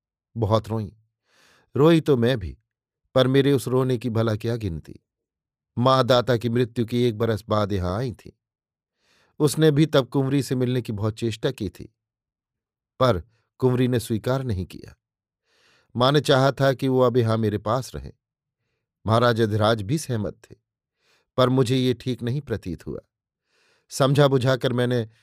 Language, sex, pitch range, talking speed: Hindi, male, 110-130 Hz, 160 wpm